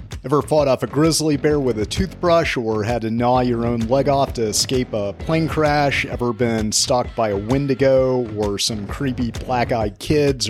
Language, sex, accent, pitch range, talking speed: English, male, American, 115-135 Hz, 190 wpm